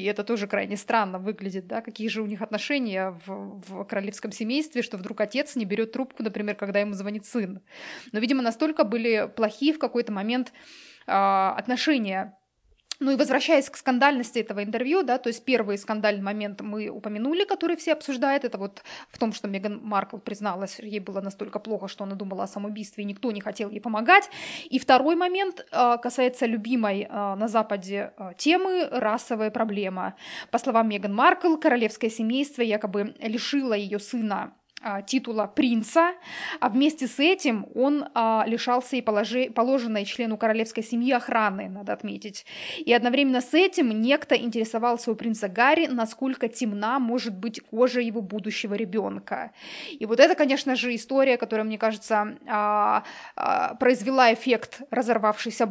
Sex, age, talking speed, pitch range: female, 20-39, 155 wpm, 210-255 Hz